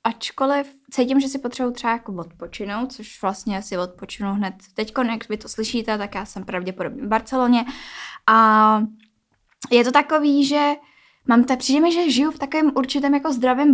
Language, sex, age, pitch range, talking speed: Czech, female, 10-29, 205-250 Hz, 170 wpm